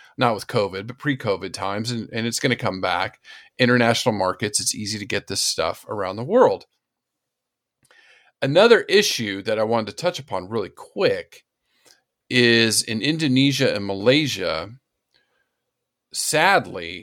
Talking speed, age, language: 140 wpm, 40-59, English